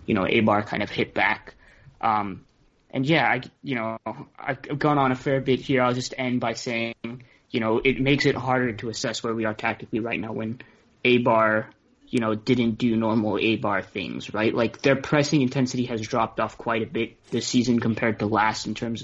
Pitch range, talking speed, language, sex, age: 110-125 Hz, 220 wpm, English, male, 20-39